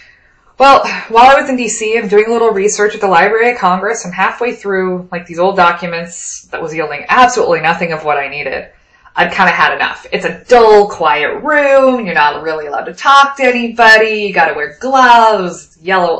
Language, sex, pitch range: English, female, 165-215 Hz